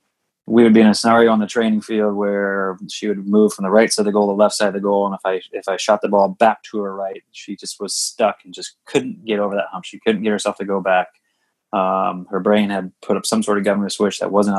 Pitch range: 100-110 Hz